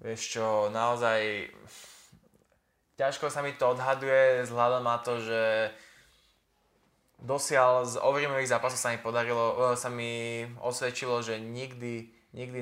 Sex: male